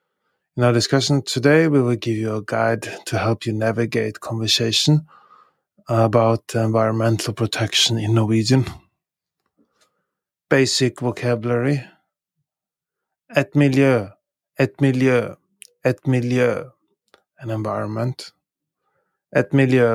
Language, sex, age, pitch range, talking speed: English, male, 20-39, 115-135 Hz, 100 wpm